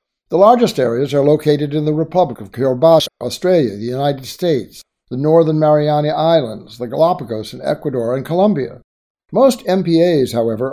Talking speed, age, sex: 150 wpm, 60-79, male